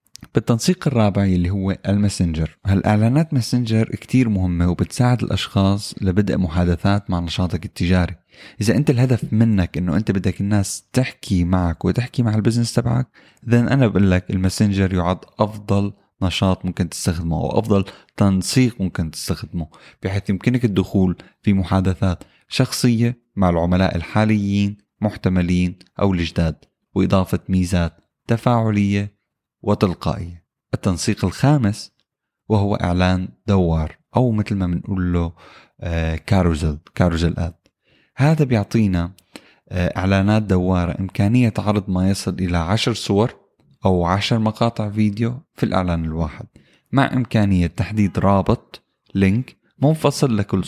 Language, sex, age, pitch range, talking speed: Arabic, male, 20-39, 90-115 Hz, 115 wpm